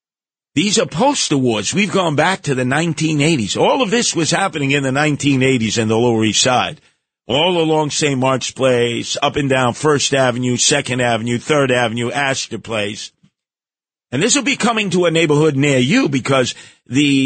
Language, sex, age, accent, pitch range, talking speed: English, male, 50-69, American, 120-160 Hz, 175 wpm